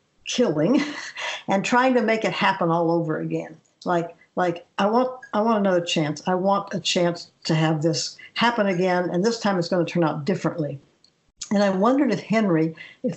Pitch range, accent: 165-200 Hz, American